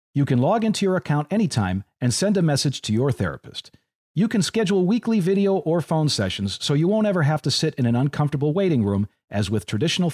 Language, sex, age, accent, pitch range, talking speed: English, male, 40-59, American, 120-190 Hz, 220 wpm